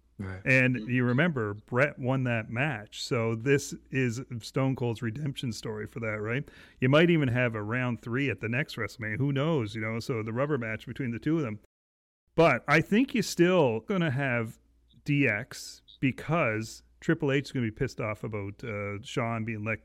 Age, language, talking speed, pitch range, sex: 40-59, English, 185 wpm, 115-145 Hz, male